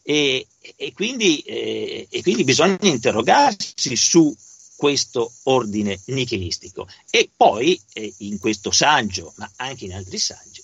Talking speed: 115 wpm